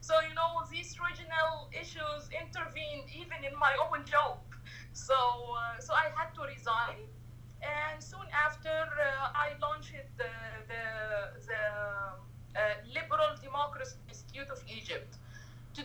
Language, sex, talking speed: English, female, 135 wpm